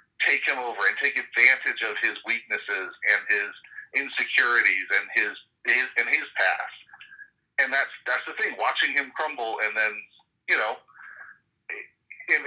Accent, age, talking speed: American, 50-69, 150 wpm